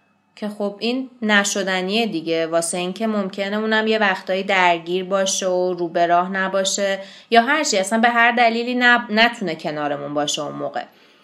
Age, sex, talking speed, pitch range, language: 20-39, female, 160 wpm, 180-245 Hz, Persian